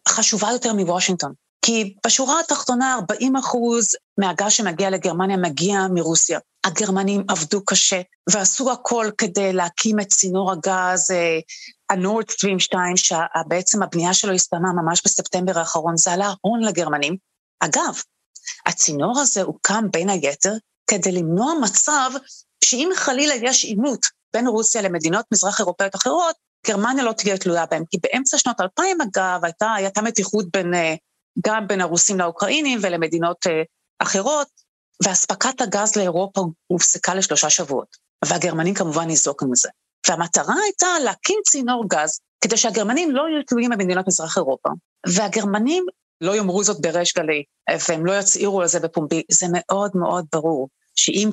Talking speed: 135 wpm